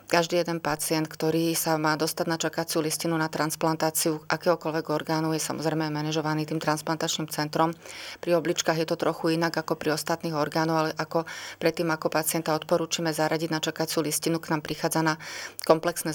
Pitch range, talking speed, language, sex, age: 155-165 Hz, 165 wpm, Slovak, female, 30-49